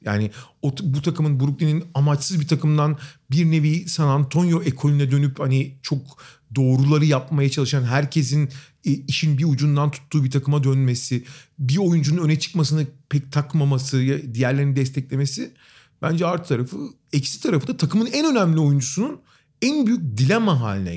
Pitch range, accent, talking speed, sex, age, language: 135-170 Hz, native, 140 wpm, male, 40-59, Turkish